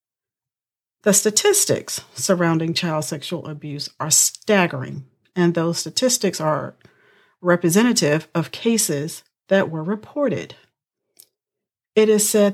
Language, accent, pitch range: English, American, 155-200 Hz